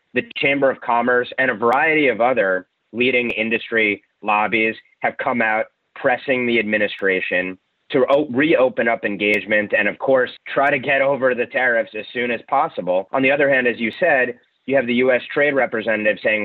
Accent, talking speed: American, 180 wpm